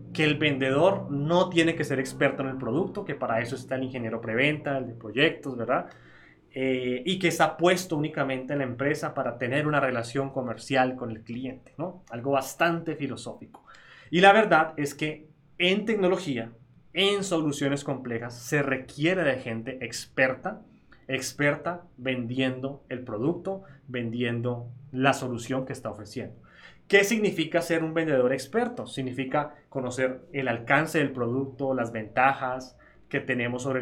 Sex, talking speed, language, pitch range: male, 150 wpm, Spanish, 125-155 Hz